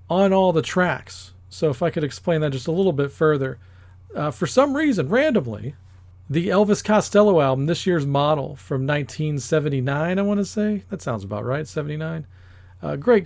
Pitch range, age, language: 130-195 Hz, 40-59, English